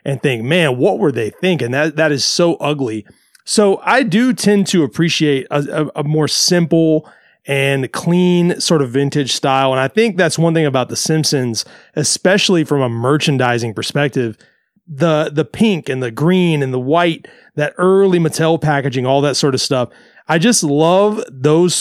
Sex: male